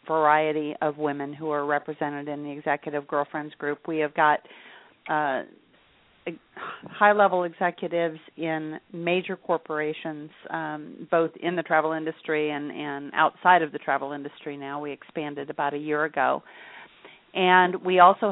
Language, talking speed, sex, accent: English, 140 wpm, female, American